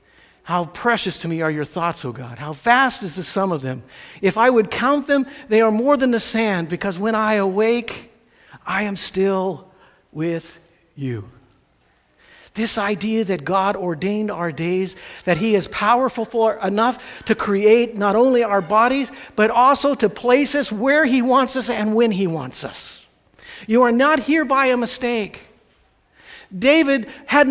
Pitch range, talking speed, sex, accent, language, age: 185-245 Hz, 170 wpm, male, American, English, 50-69